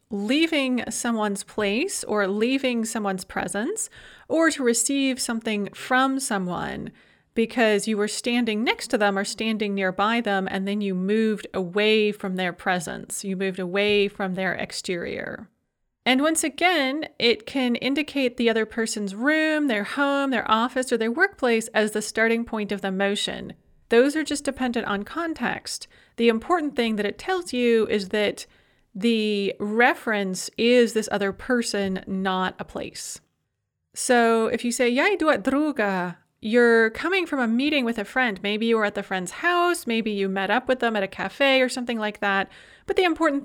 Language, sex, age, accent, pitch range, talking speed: English, female, 30-49, American, 200-255 Hz, 175 wpm